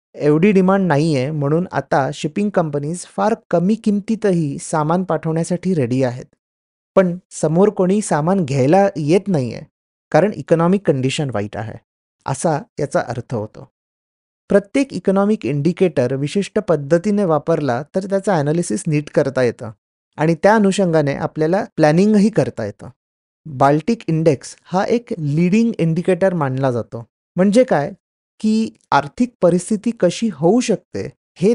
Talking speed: 130 wpm